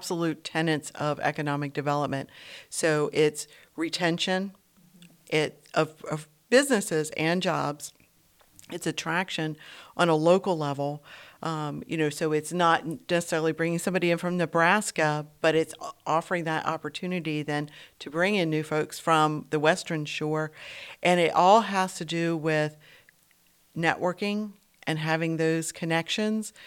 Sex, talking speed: female, 135 wpm